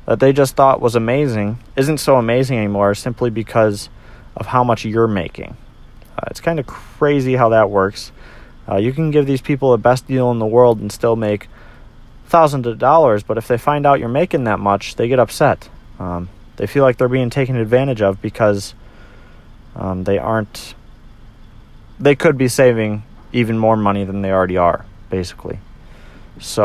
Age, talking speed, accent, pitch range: 30-49, 180 wpm, American, 105-130 Hz